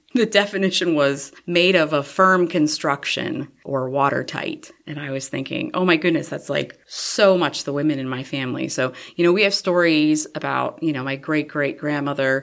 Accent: American